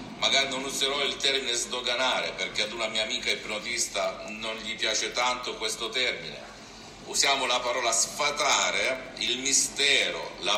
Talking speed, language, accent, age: 140 wpm, Italian, native, 50-69